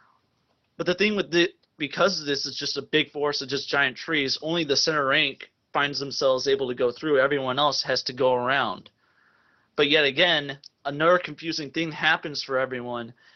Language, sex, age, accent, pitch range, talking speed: English, male, 30-49, American, 130-160 Hz, 185 wpm